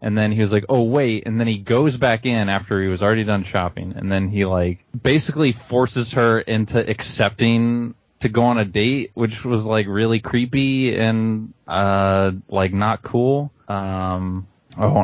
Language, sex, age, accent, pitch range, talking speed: English, male, 20-39, American, 105-130 Hz, 180 wpm